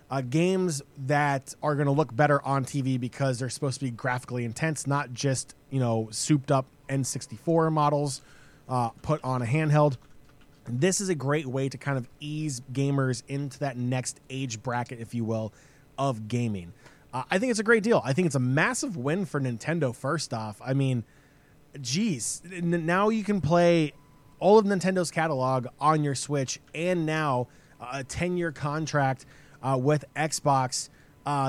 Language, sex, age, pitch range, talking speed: English, male, 20-39, 130-160 Hz, 175 wpm